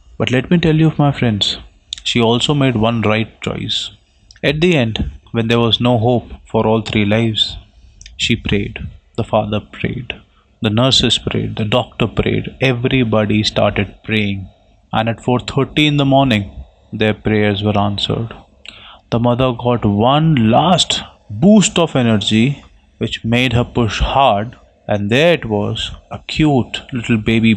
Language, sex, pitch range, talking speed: English, male, 105-130 Hz, 150 wpm